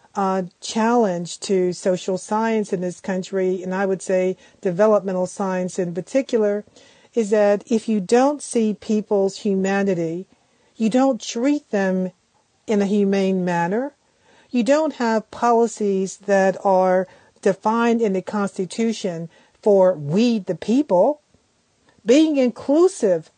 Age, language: 50-69, English